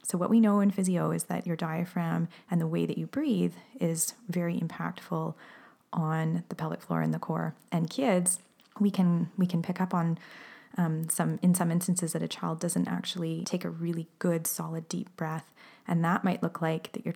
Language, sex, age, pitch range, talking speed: English, female, 20-39, 160-185 Hz, 205 wpm